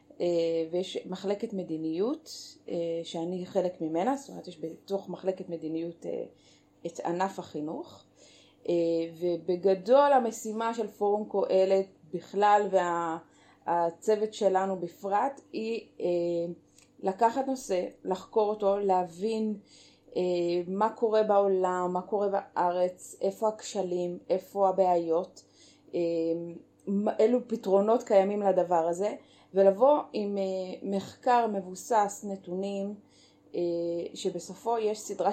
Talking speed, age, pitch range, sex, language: 105 wpm, 30-49, 175-210 Hz, female, Hebrew